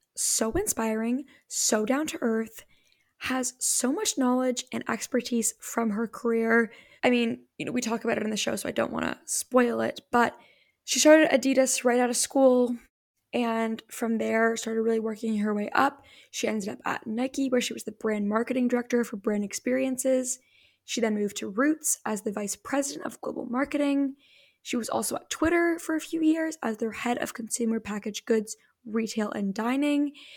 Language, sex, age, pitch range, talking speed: English, female, 10-29, 220-265 Hz, 190 wpm